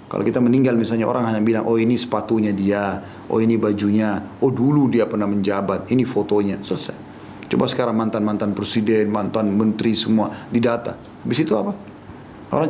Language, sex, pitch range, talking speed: Indonesian, male, 110-140 Hz, 165 wpm